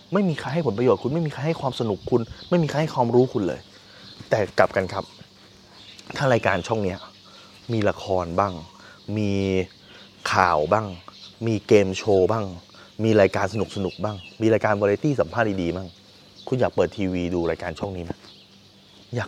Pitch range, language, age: 95-130 Hz, Thai, 20-39